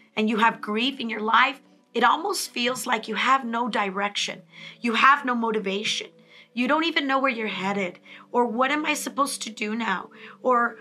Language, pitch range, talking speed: English, 215-270 Hz, 195 wpm